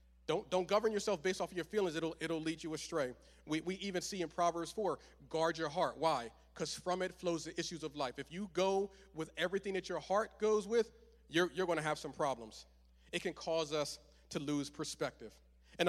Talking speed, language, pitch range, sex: 220 wpm, English, 135-170 Hz, male